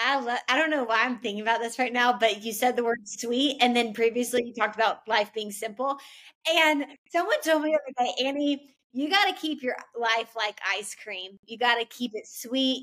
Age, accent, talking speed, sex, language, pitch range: 20-39, American, 225 wpm, female, English, 230-300 Hz